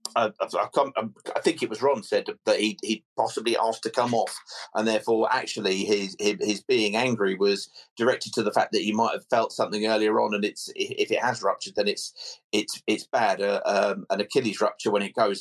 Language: English